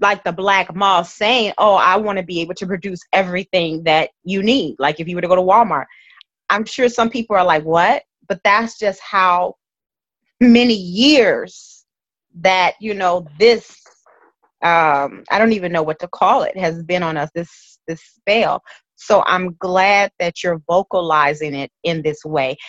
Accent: American